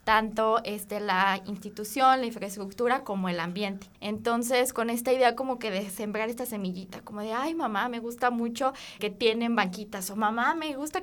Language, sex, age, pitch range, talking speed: Spanish, female, 20-39, 205-250 Hz, 180 wpm